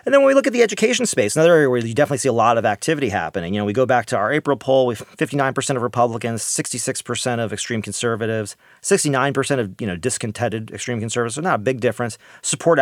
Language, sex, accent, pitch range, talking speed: English, male, American, 115-150 Hz, 250 wpm